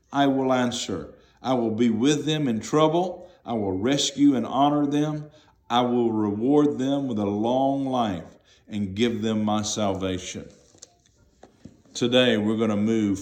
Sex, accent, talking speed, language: male, American, 155 wpm, English